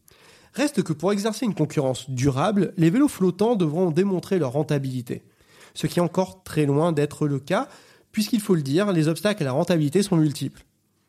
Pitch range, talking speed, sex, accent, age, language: 145-200 Hz, 185 wpm, male, French, 30-49, French